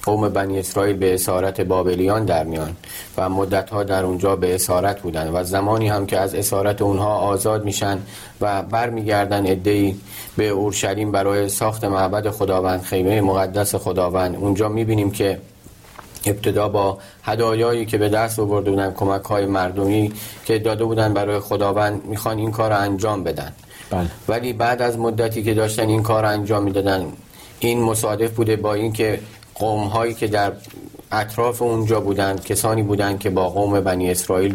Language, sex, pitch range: Persian, male, 95-110 Hz